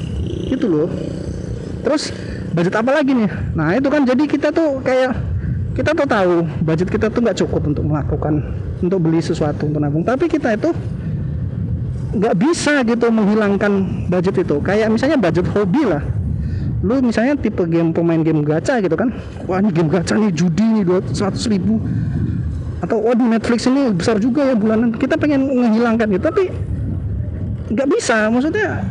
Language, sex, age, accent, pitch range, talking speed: Indonesian, male, 30-49, native, 170-245 Hz, 160 wpm